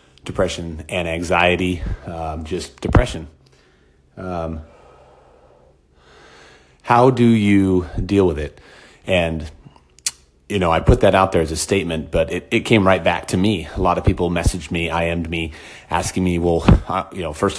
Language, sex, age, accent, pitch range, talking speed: English, male, 30-49, American, 80-95 Hz, 155 wpm